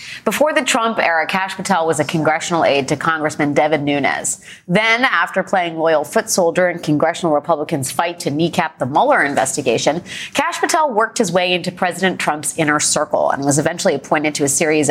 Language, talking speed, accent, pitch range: English, 185 wpm, American, 160-220 Hz